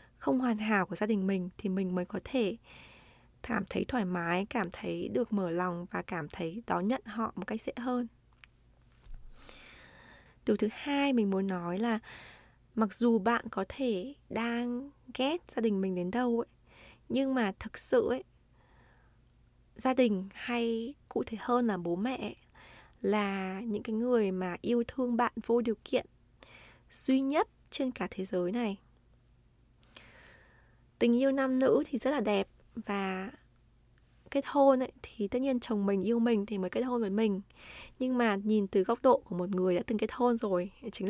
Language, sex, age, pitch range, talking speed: Vietnamese, female, 20-39, 190-245 Hz, 180 wpm